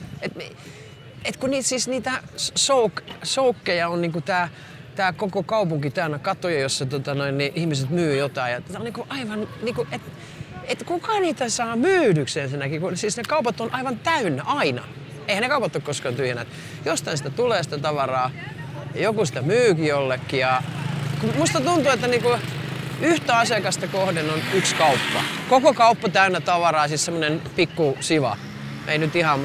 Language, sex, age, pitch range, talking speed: Finnish, male, 40-59, 145-210 Hz, 165 wpm